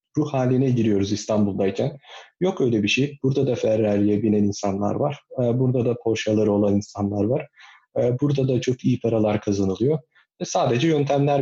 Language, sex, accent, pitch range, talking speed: Turkish, male, native, 110-135 Hz, 145 wpm